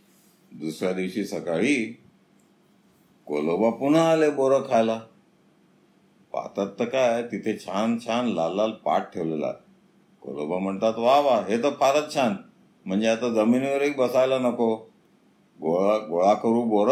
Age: 50-69